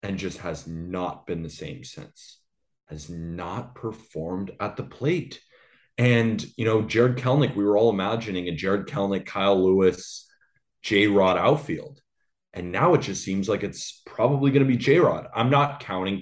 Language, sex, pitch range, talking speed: English, male, 100-130 Hz, 165 wpm